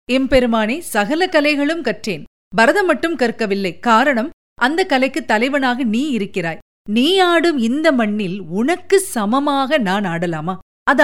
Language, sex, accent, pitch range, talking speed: Tamil, female, native, 215-295 Hz, 105 wpm